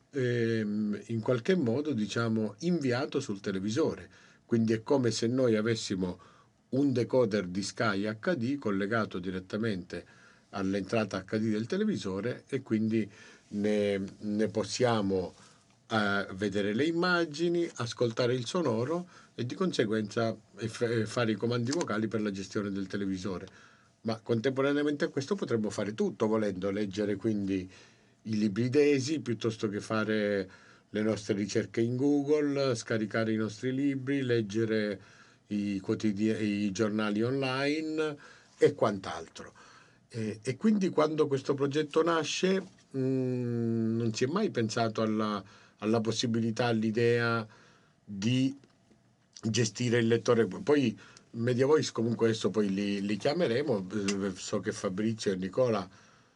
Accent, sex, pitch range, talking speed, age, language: native, male, 105-130 Hz, 125 wpm, 50-69, Italian